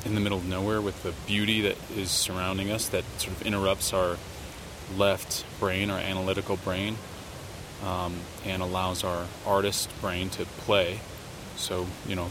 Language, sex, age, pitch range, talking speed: English, male, 20-39, 90-105 Hz, 160 wpm